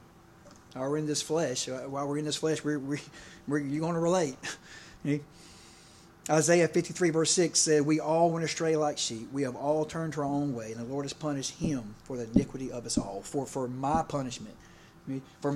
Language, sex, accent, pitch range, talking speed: English, male, American, 145-175 Hz, 200 wpm